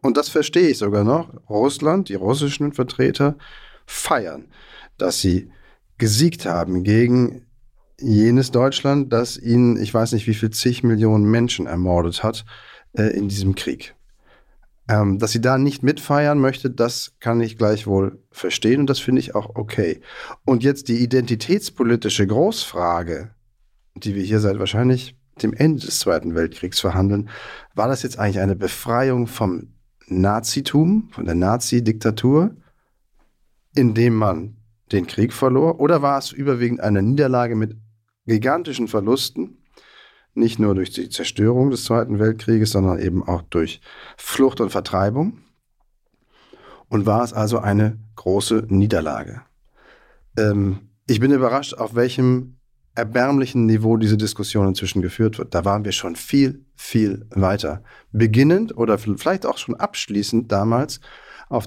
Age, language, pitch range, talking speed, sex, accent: 40-59, German, 100-130 Hz, 140 wpm, male, German